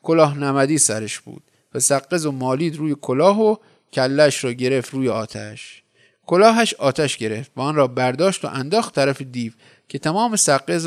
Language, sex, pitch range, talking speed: Persian, male, 125-170 Hz, 170 wpm